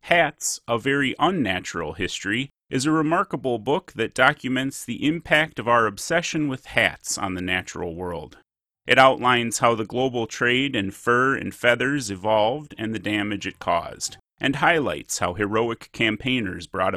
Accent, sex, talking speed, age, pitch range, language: American, male, 155 wpm, 30-49, 100-140 Hz, English